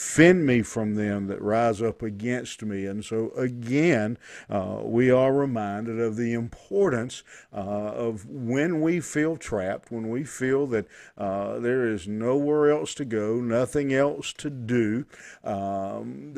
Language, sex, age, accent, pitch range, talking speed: English, male, 50-69, American, 105-125 Hz, 150 wpm